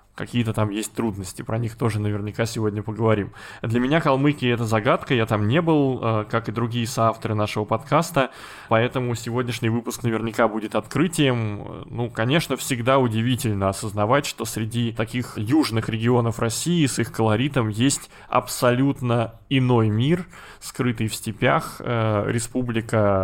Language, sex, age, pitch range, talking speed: Russian, male, 20-39, 110-130 Hz, 135 wpm